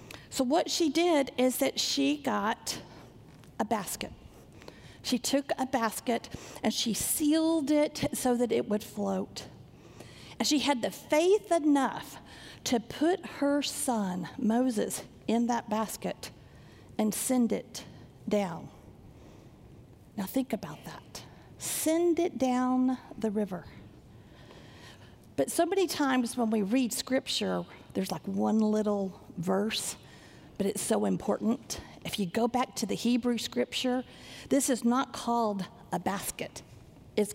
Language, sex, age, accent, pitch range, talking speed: English, female, 50-69, American, 215-275 Hz, 130 wpm